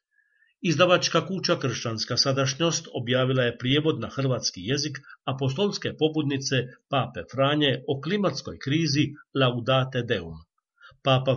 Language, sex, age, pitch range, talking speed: Croatian, male, 50-69, 125-155 Hz, 105 wpm